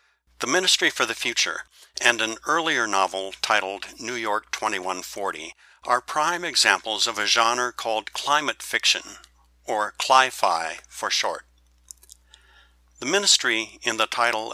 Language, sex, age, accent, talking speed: English, male, 60-79, American, 130 wpm